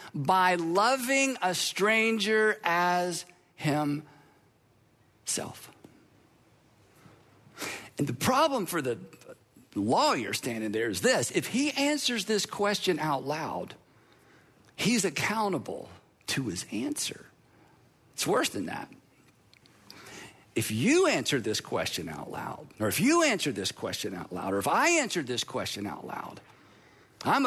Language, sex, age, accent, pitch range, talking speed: English, male, 50-69, American, 160-240 Hz, 120 wpm